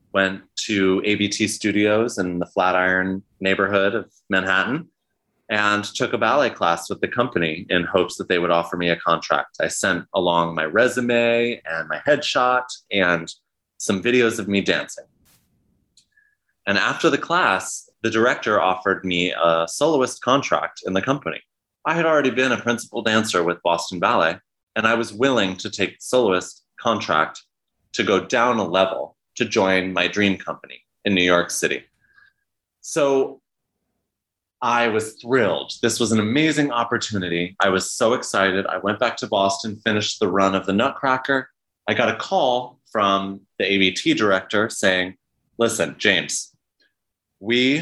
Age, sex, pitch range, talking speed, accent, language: 30-49, male, 95-120 Hz, 155 wpm, American, English